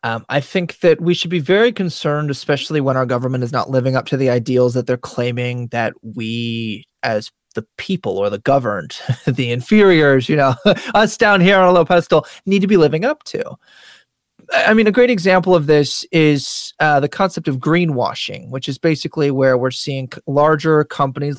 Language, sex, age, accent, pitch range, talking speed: English, male, 20-39, American, 130-185 Hz, 190 wpm